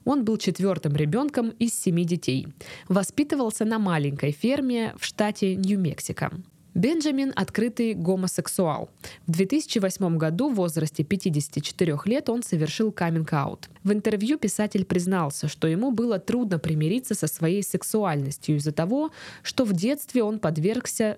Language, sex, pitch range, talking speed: Russian, female, 160-220 Hz, 130 wpm